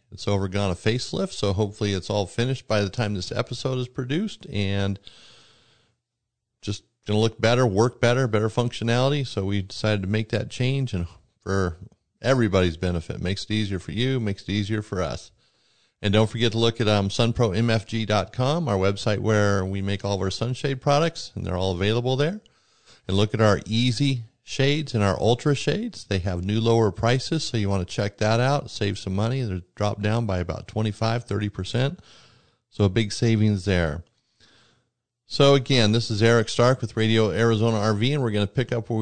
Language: English